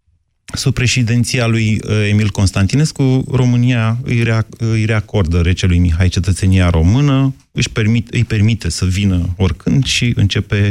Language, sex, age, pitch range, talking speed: Romanian, male, 30-49, 95-115 Hz, 120 wpm